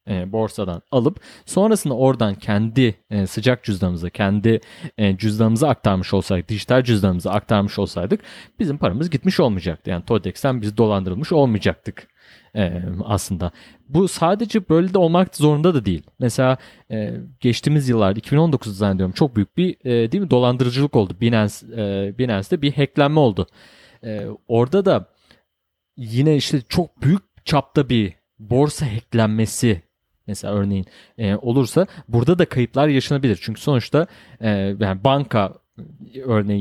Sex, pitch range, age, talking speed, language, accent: male, 100-140 Hz, 30-49, 135 wpm, Turkish, native